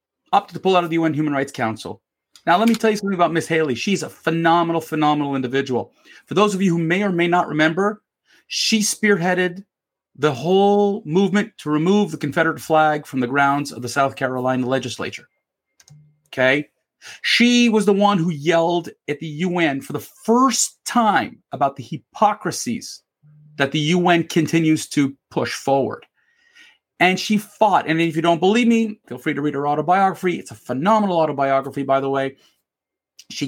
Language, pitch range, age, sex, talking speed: English, 145-200 Hz, 40-59, male, 175 wpm